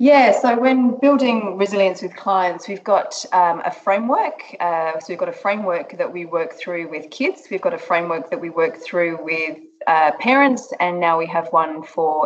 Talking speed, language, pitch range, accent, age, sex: 200 wpm, English, 165-205 Hz, Australian, 30-49, female